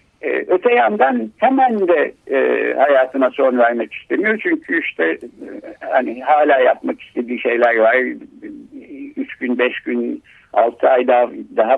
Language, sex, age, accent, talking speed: Turkish, male, 60-79, native, 125 wpm